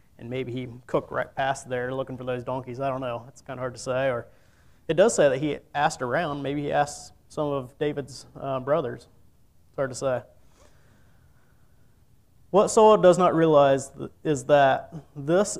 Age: 30-49